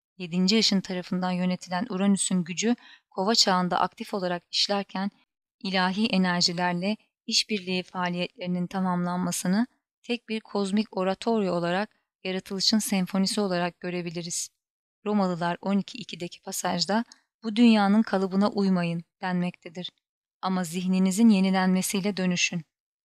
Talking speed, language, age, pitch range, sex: 95 wpm, Turkish, 30-49, 180-210 Hz, female